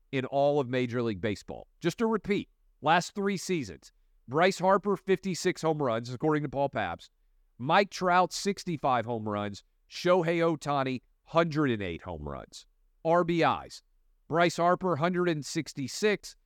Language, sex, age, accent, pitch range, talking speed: English, male, 40-59, American, 115-170 Hz, 130 wpm